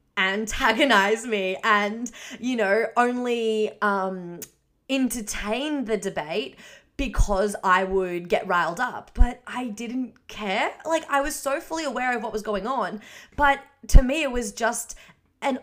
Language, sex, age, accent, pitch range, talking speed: English, female, 20-39, Australian, 190-240 Hz, 145 wpm